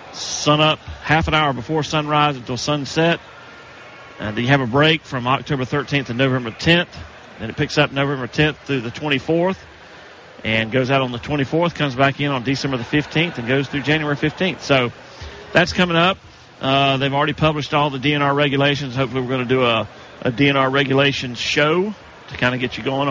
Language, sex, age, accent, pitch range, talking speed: English, male, 40-59, American, 120-150 Hz, 195 wpm